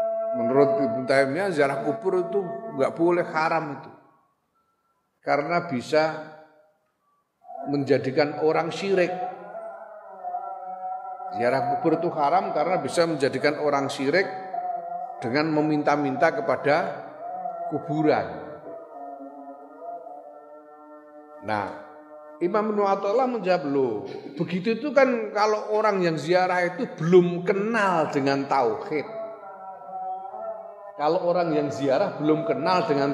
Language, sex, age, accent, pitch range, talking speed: Indonesian, male, 40-59, native, 150-225 Hz, 90 wpm